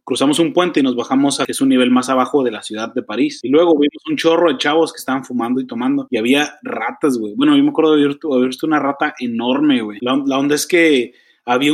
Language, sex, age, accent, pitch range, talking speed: English, male, 30-49, Mexican, 135-180 Hz, 260 wpm